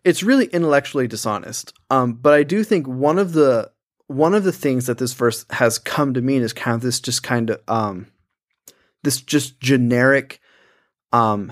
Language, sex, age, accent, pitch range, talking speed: English, male, 20-39, American, 115-145 Hz, 180 wpm